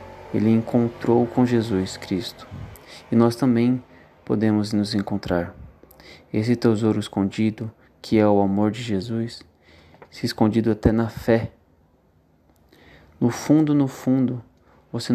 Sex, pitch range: male, 95-120 Hz